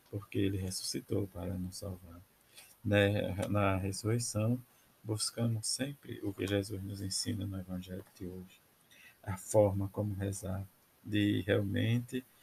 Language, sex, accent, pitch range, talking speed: Portuguese, male, Brazilian, 95-110 Hz, 120 wpm